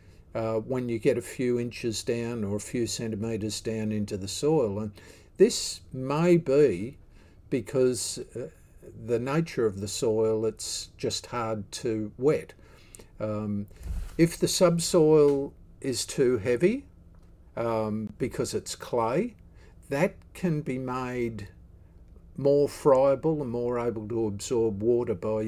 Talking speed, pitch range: 130 wpm, 100-130 Hz